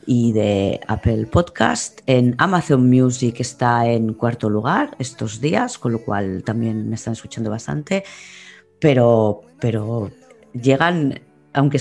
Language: Spanish